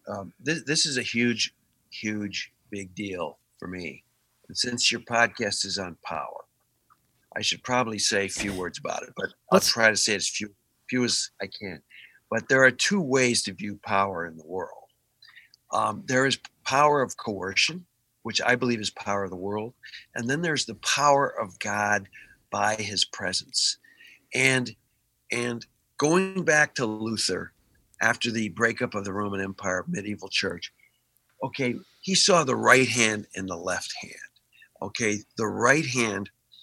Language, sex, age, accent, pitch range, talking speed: English, male, 50-69, American, 105-145 Hz, 170 wpm